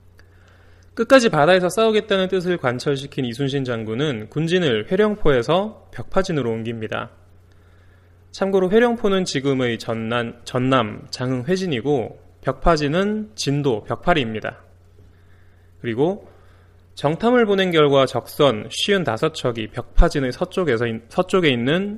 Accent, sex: native, male